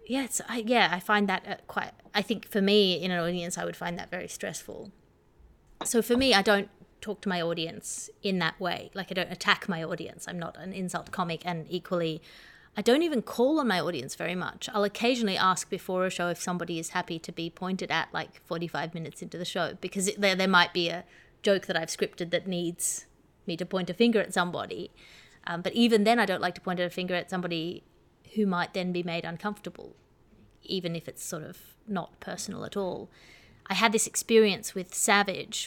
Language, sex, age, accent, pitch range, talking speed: English, female, 30-49, Australian, 175-210 Hz, 210 wpm